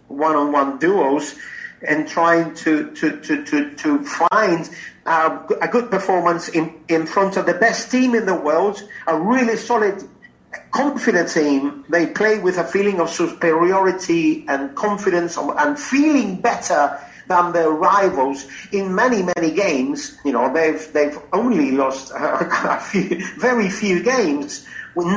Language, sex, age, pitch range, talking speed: English, male, 50-69, 160-225 Hz, 145 wpm